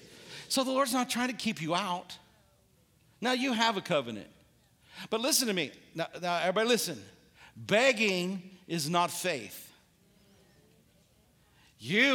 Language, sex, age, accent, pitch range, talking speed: English, male, 50-69, American, 155-200 Hz, 135 wpm